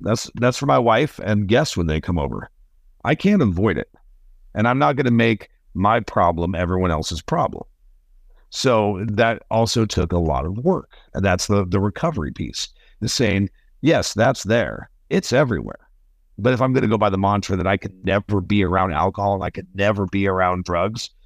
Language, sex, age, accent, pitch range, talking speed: English, male, 50-69, American, 90-110 Hz, 200 wpm